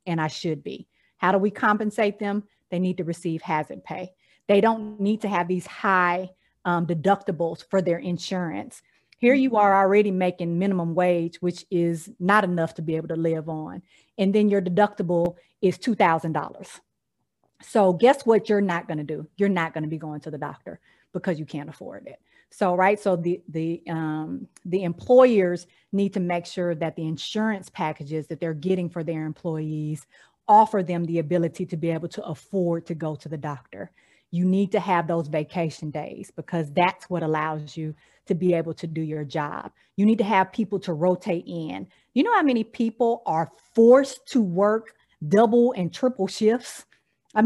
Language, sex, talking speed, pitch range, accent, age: English, female, 190 wpm, 165-205 Hz, American, 30-49